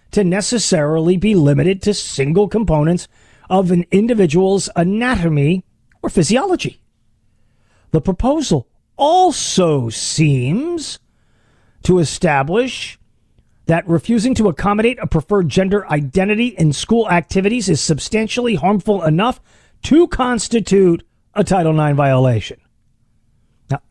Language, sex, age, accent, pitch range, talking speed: English, male, 40-59, American, 140-205 Hz, 105 wpm